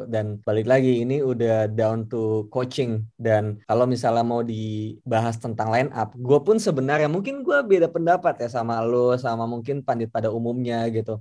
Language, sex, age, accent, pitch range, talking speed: Indonesian, male, 20-39, native, 115-150 Hz, 170 wpm